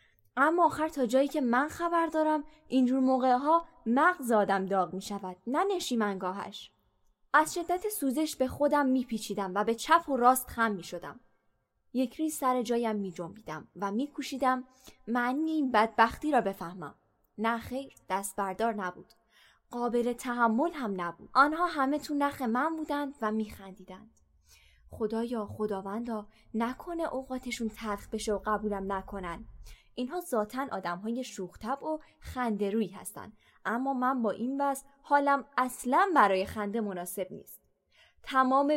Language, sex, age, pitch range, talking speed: Persian, female, 20-39, 205-280 Hz, 135 wpm